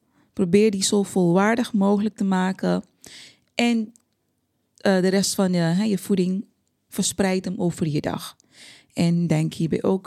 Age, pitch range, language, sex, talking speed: 20-39, 165-215 Hz, Dutch, female, 150 wpm